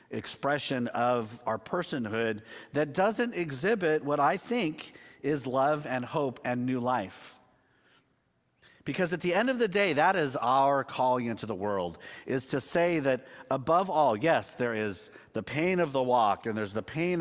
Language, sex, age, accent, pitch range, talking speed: English, male, 40-59, American, 115-150 Hz, 170 wpm